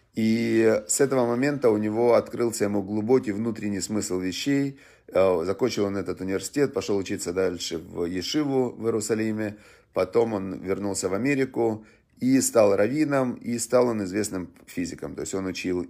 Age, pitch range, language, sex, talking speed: 30-49, 95-125 Hz, Russian, male, 150 wpm